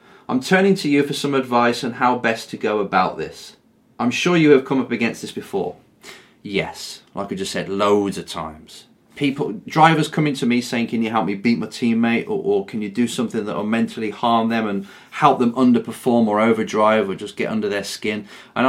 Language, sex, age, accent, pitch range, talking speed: English, male, 30-49, British, 115-155 Hz, 220 wpm